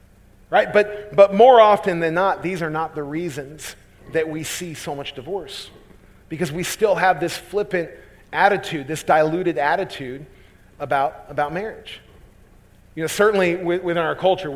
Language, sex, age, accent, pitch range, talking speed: English, male, 40-59, American, 145-190 Hz, 155 wpm